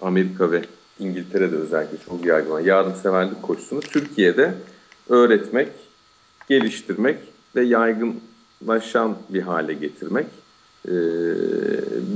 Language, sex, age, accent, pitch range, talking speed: Turkish, male, 50-69, native, 90-125 Hz, 85 wpm